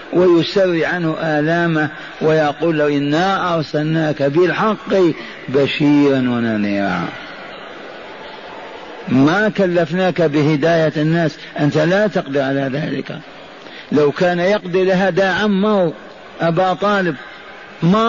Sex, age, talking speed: male, 50-69, 90 wpm